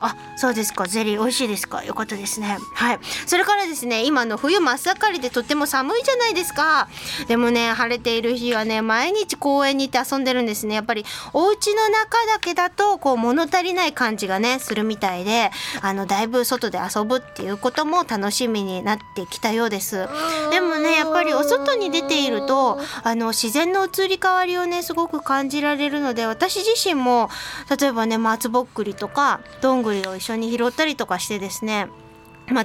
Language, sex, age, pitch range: Japanese, female, 20-39, 215-300 Hz